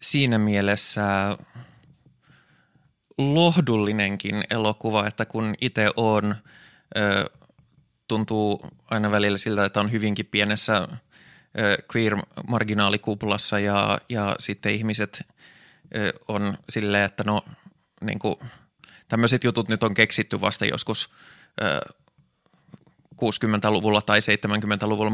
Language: Finnish